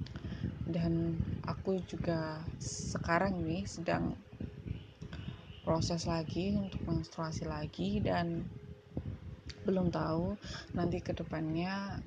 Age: 20-39